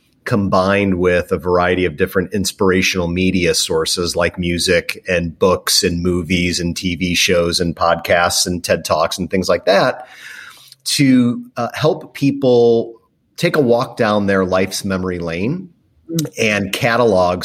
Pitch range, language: 90-105 Hz, English